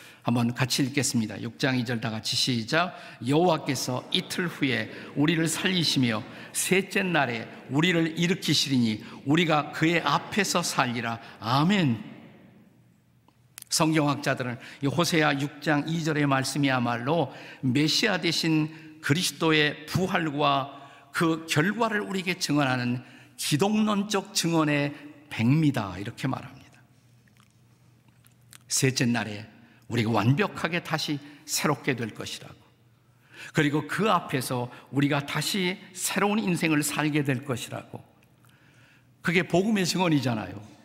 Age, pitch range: 50-69, 125-160 Hz